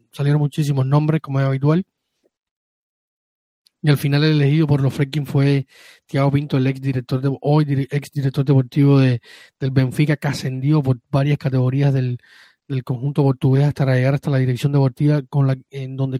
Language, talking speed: Spanish, 175 wpm